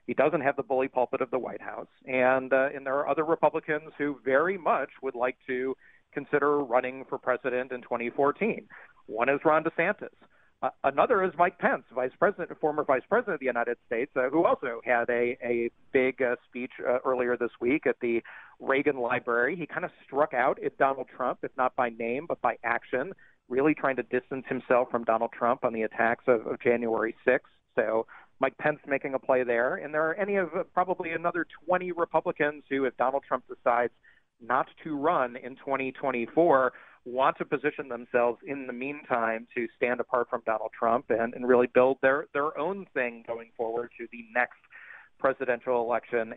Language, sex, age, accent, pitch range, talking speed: English, male, 40-59, American, 120-145 Hz, 195 wpm